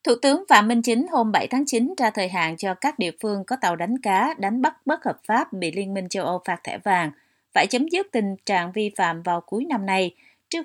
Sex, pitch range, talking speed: female, 180-245 Hz, 255 wpm